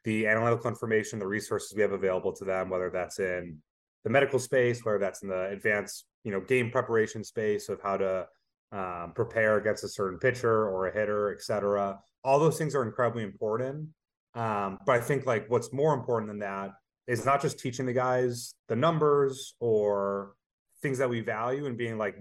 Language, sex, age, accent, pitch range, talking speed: English, male, 30-49, American, 100-130 Hz, 195 wpm